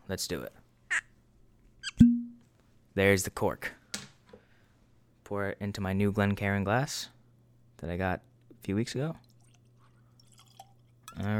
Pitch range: 100-120 Hz